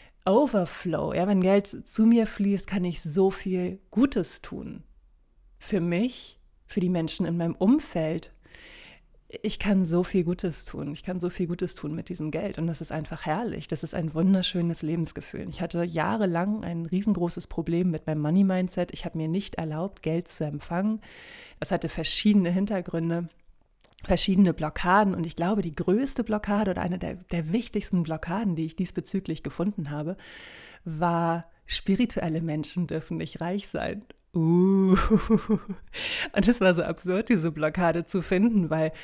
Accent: German